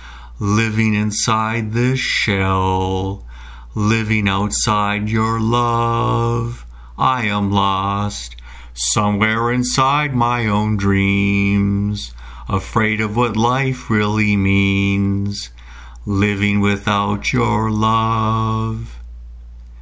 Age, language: 50-69, English